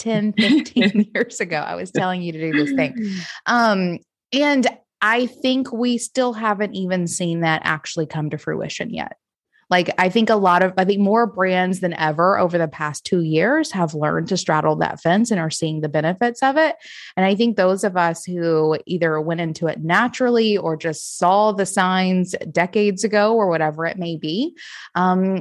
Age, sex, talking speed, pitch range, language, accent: 20-39, female, 195 wpm, 165-215 Hz, English, American